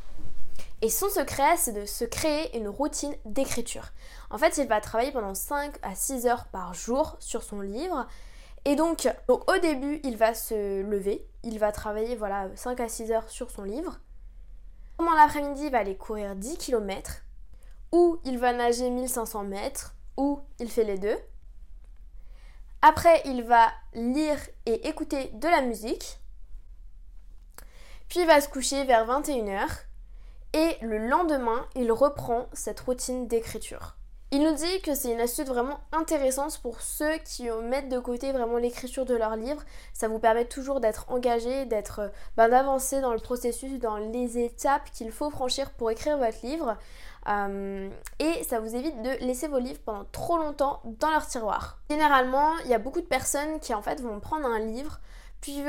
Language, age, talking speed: French, 20-39, 170 wpm